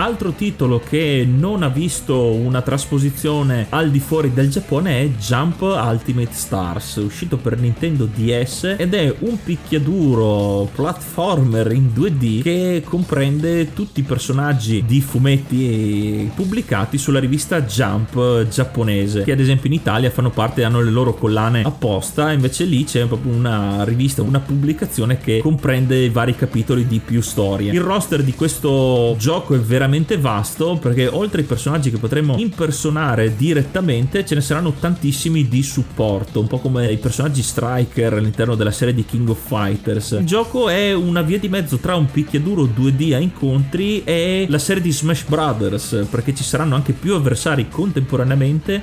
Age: 30-49